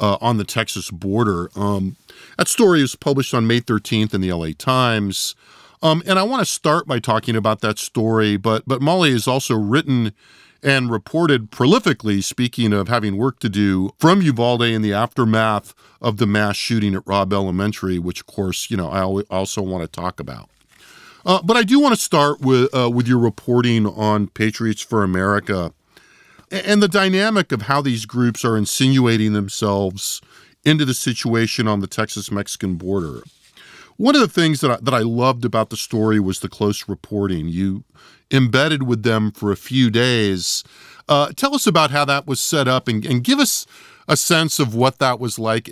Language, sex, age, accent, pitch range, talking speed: English, male, 40-59, American, 100-135 Hz, 190 wpm